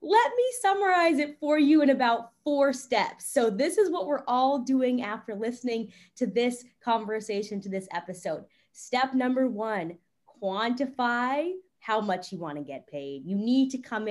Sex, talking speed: female, 165 wpm